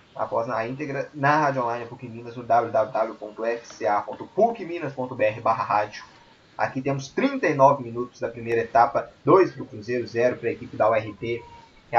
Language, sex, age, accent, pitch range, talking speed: Portuguese, male, 20-39, Brazilian, 115-140 Hz, 150 wpm